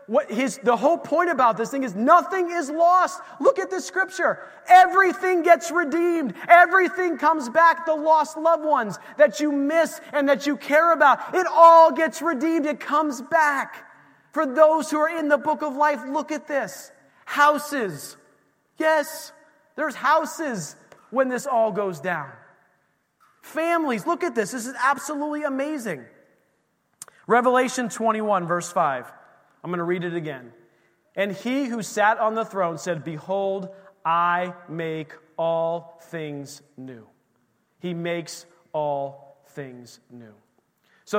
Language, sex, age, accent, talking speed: English, male, 30-49, American, 145 wpm